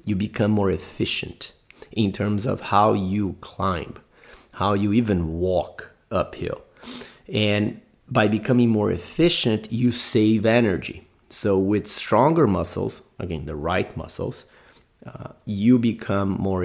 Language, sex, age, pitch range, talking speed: English, male, 30-49, 90-110 Hz, 125 wpm